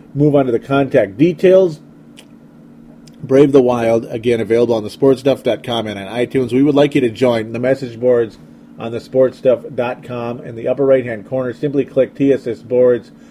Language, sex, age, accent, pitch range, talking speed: English, male, 30-49, American, 105-130 Hz, 160 wpm